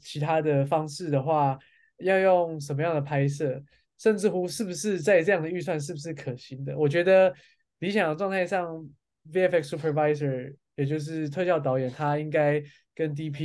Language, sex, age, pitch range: Chinese, male, 20-39, 140-170 Hz